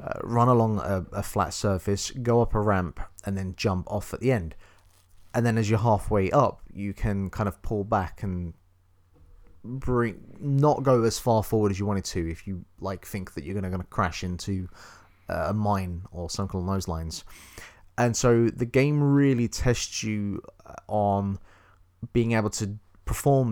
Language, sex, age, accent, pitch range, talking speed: English, male, 30-49, British, 90-115 Hz, 180 wpm